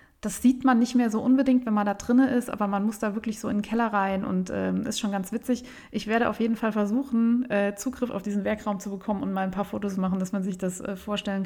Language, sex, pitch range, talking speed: German, female, 200-250 Hz, 280 wpm